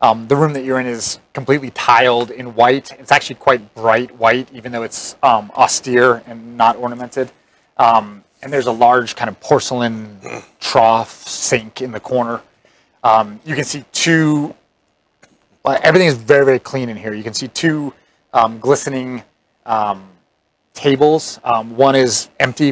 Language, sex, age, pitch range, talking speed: English, male, 30-49, 110-135 Hz, 160 wpm